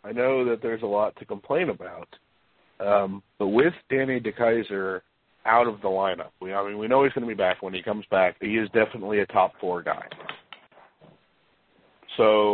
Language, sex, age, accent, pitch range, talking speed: English, male, 40-59, American, 90-110 Hz, 190 wpm